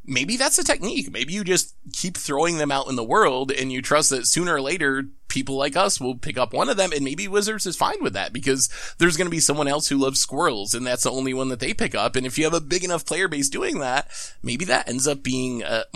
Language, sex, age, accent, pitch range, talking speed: English, male, 20-39, American, 125-175 Hz, 275 wpm